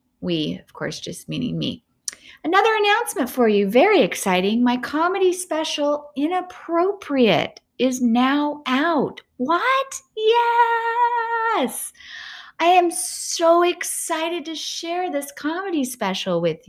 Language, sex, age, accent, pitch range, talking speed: English, female, 30-49, American, 210-320 Hz, 110 wpm